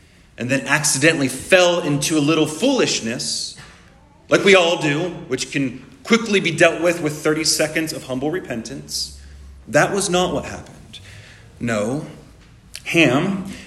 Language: English